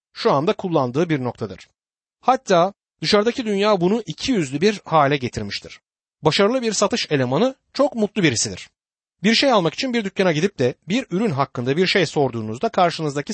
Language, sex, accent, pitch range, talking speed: Turkish, male, native, 145-215 Hz, 160 wpm